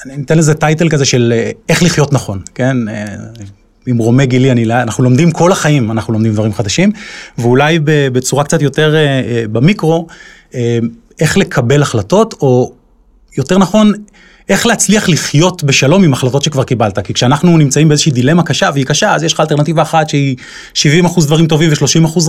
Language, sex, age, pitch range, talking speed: Hebrew, male, 30-49, 130-180 Hz, 160 wpm